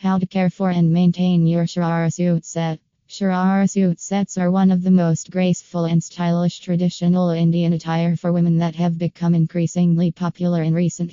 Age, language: 20-39, English